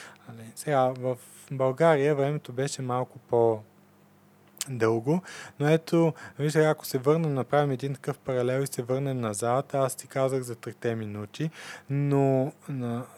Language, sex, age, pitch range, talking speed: Bulgarian, male, 20-39, 125-145 Hz, 130 wpm